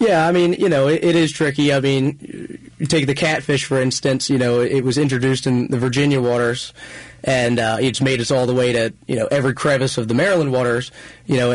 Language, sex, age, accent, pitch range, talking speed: English, male, 30-49, American, 120-145 Hz, 235 wpm